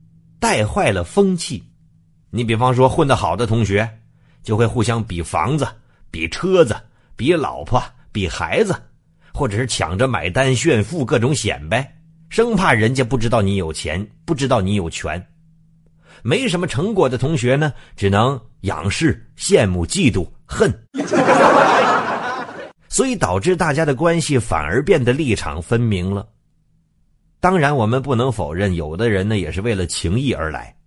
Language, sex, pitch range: Chinese, male, 100-145 Hz